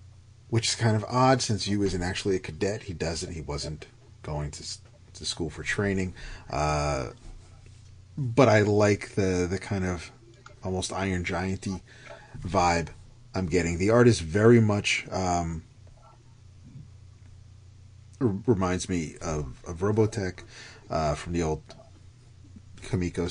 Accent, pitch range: American, 90-115 Hz